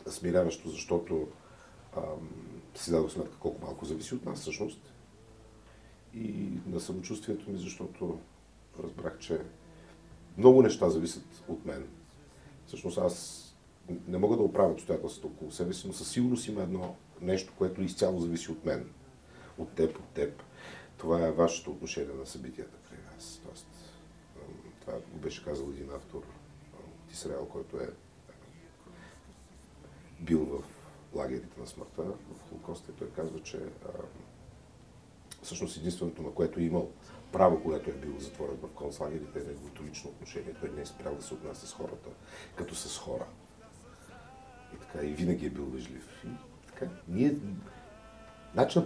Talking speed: 145 wpm